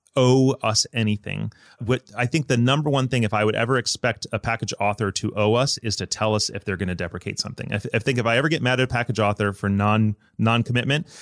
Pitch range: 110-135 Hz